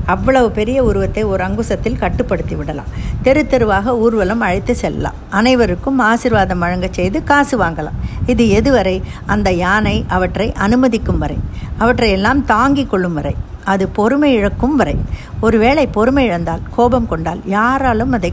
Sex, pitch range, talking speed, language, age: female, 195-255 Hz, 130 wpm, Tamil, 50-69